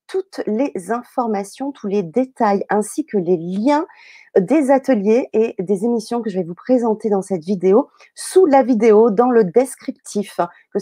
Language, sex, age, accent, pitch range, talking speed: French, female, 30-49, French, 195-280 Hz, 165 wpm